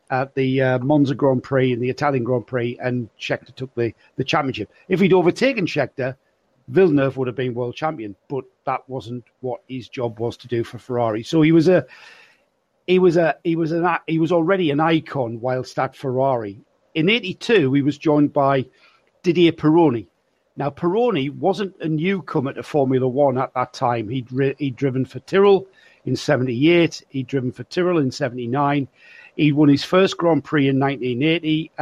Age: 50-69